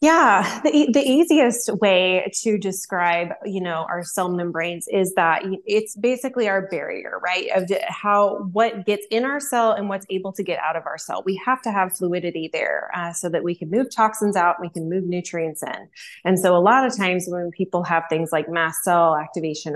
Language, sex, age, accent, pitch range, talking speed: English, female, 20-39, American, 175-215 Hz, 205 wpm